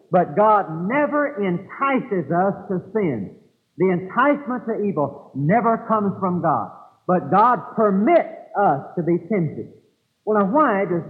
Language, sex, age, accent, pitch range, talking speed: English, male, 50-69, American, 170-230 Hz, 140 wpm